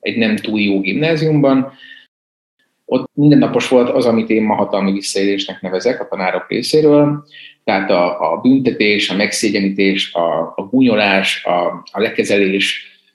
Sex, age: male, 30-49